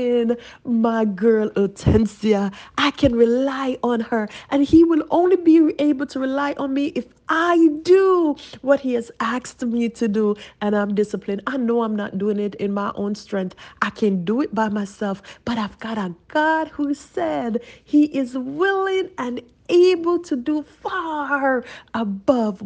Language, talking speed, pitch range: English, 165 wpm, 220-305 Hz